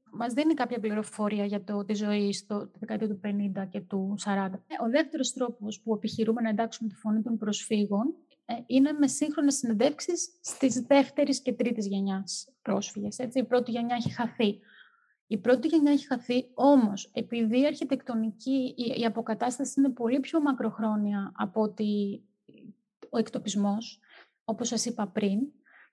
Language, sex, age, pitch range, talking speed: Greek, female, 30-49, 215-270 Hz, 155 wpm